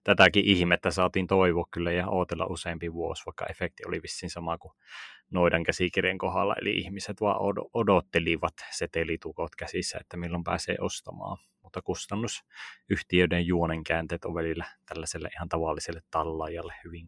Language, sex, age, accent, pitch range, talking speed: Finnish, male, 30-49, native, 85-95 Hz, 130 wpm